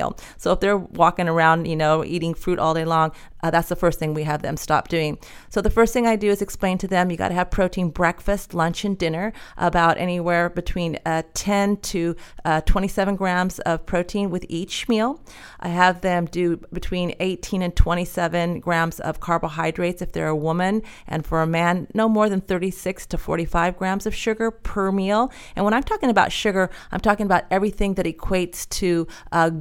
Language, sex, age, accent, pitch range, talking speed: English, female, 40-59, American, 165-190 Hz, 200 wpm